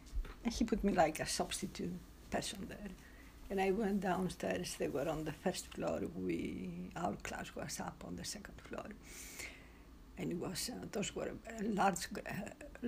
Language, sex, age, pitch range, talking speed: English, female, 60-79, 170-205 Hz, 165 wpm